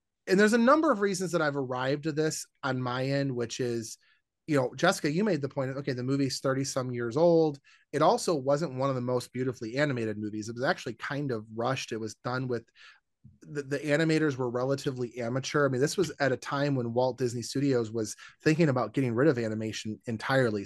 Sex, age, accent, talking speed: male, 30-49, American, 220 wpm